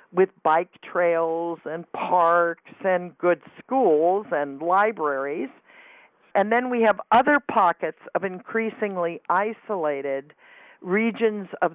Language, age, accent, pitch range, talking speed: English, 50-69, American, 160-210 Hz, 105 wpm